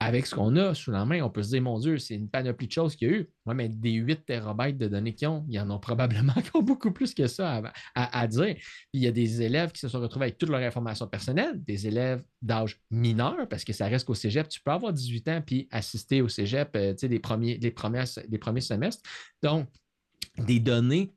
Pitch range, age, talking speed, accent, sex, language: 110-145 Hz, 30-49, 260 wpm, Canadian, male, French